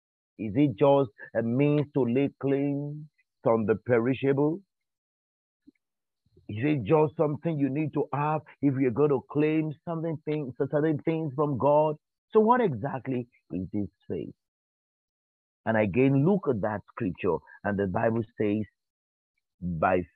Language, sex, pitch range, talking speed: English, male, 100-150 Hz, 140 wpm